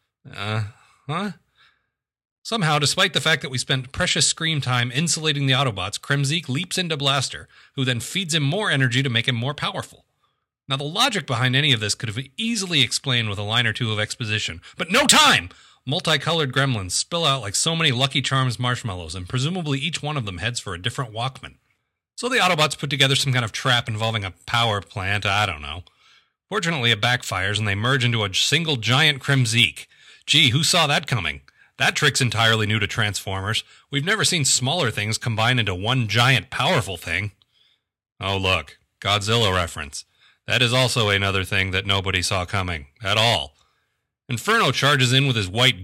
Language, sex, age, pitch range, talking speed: English, male, 30-49, 110-145 Hz, 185 wpm